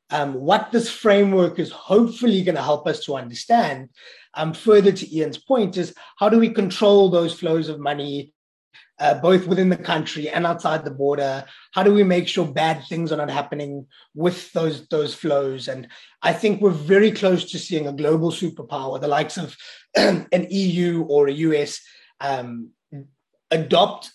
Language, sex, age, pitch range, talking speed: English, male, 20-39, 145-180 Hz, 175 wpm